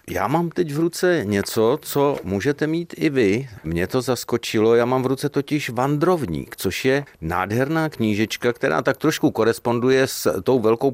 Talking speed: 170 wpm